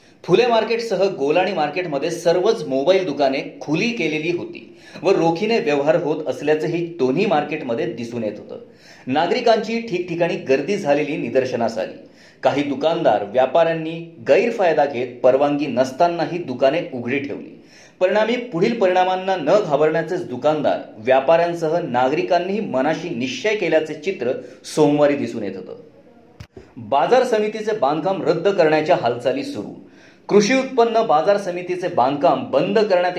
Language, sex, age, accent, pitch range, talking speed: Marathi, male, 30-49, native, 150-205 Hz, 120 wpm